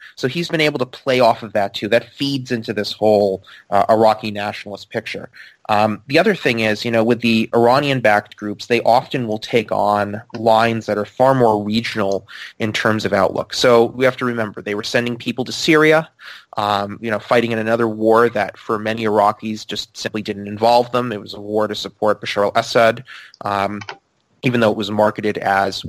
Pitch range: 105-120 Hz